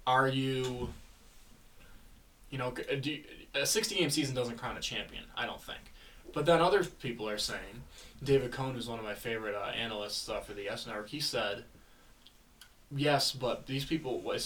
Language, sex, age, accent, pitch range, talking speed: English, male, 20-39, American, 105-135 Hz, 185 wpm